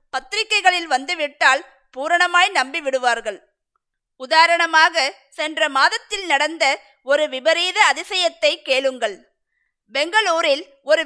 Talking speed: 80 wpm